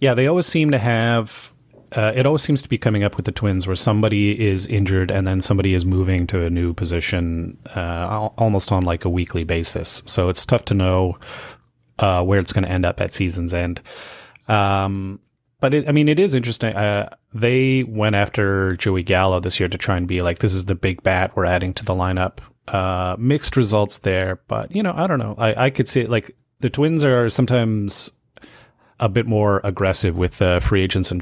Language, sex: English, male